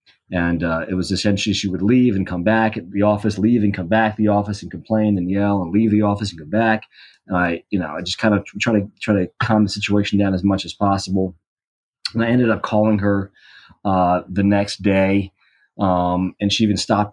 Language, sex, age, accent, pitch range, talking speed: English, male, 30-49, American, 95-110 Hz, 230 wpm